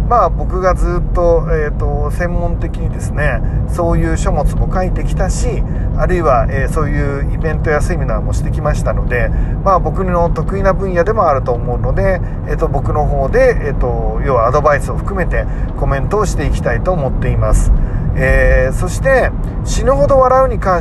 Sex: male